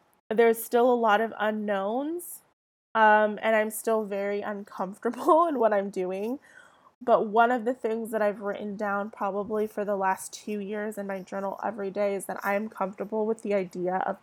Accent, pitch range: American, 200-225 Hz